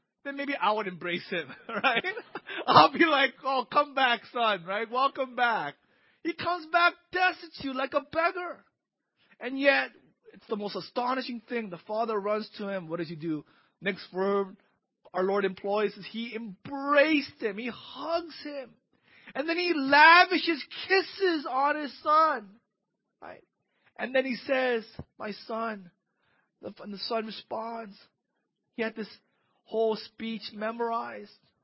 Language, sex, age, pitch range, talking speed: English, male, 30-49, 175-245 Hz, 145 wpm